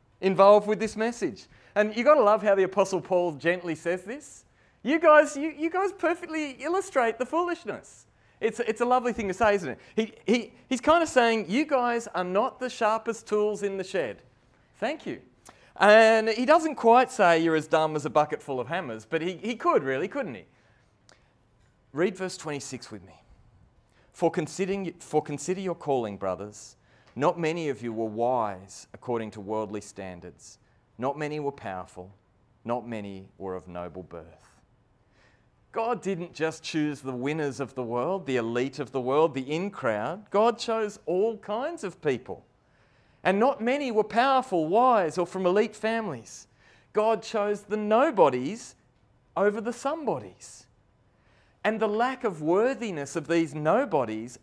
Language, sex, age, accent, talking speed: English, male, 30-49, Australian, 170 wpm